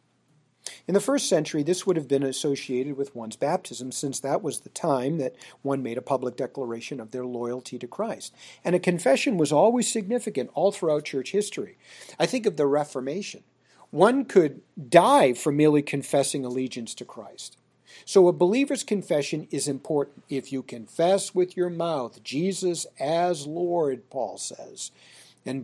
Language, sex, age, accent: English, male, 50-69, American